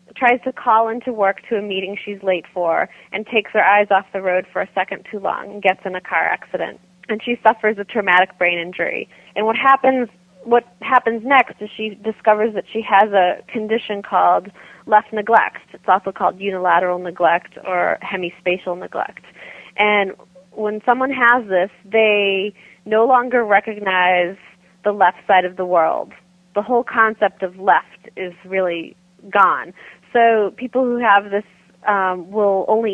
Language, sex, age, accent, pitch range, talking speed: English, female, 30-49, American, 185-220 Hz, 170 wpm